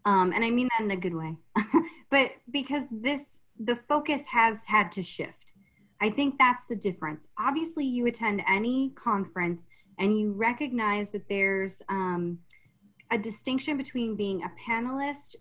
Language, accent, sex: English, American, female